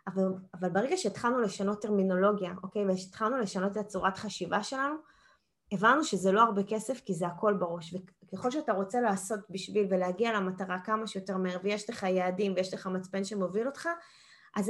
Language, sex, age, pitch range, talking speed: Hebrew, female, 20-39, 190-245 Hz, 165 wpm